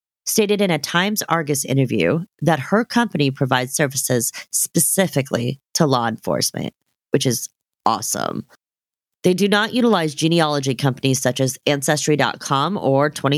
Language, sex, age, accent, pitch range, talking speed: English, female, 30-49, American, 130-170 Hz, 120 wpm